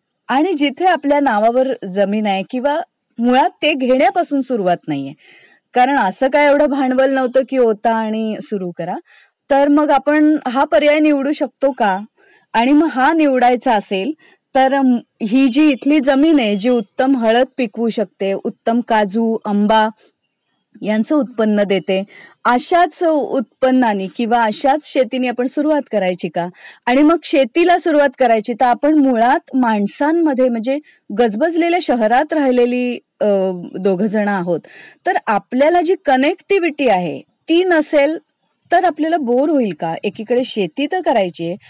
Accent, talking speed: native, 120 wpm